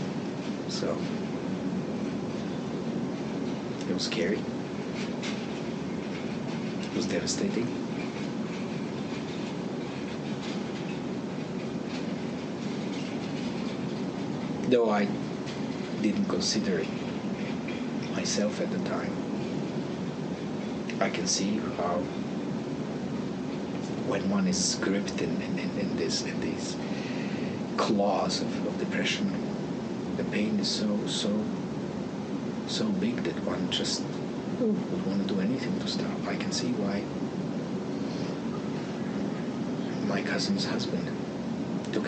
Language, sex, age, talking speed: English, male, 60-79, 85 wpm